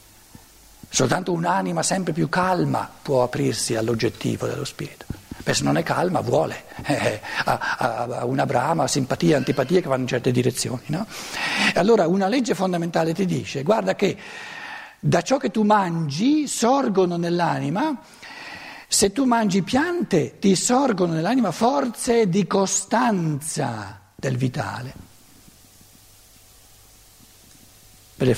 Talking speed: 120 wpm